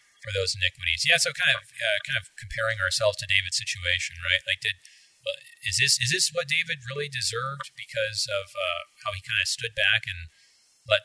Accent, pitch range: American, 95-125 Hz